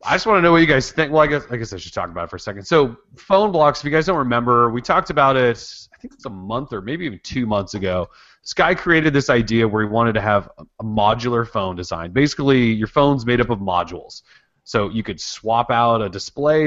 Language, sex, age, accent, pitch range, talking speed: English, male, 30-49, American, 105-140 Hz, 265 wpm